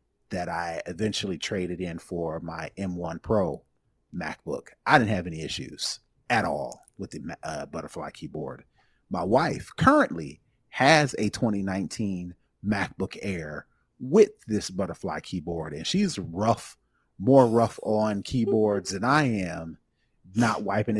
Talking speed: 130 wpm